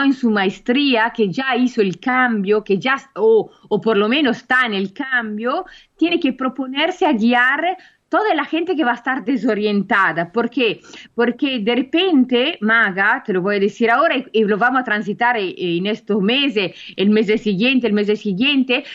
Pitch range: 220-290 Hz